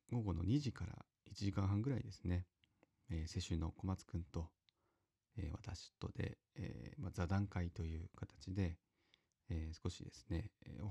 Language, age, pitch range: Japanese, 40-59, 85-110 Hz